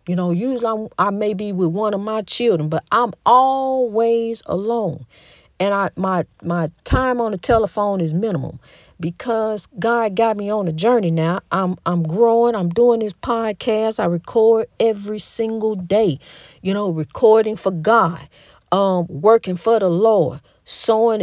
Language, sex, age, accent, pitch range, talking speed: English, female, 50-69, American, 185-280 Hz, 160 wpm